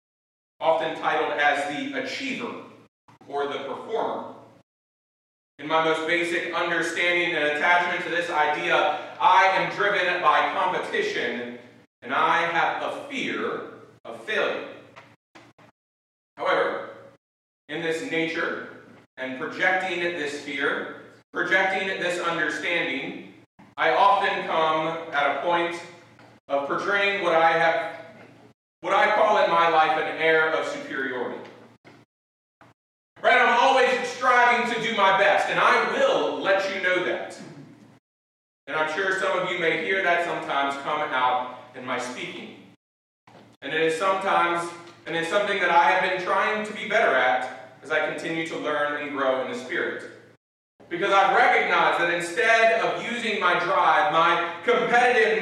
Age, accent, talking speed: 40-59, American, 140 wpm